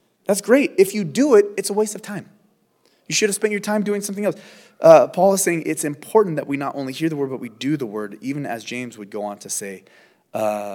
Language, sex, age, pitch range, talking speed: English, male, 30-49, 135-185 Hz, 260 wpm